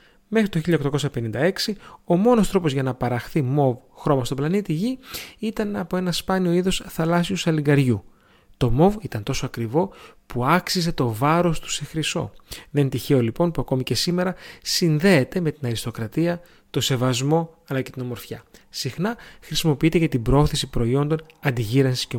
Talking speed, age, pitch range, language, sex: 160 wpm, 30-49, 130-175 Hz, Greek, male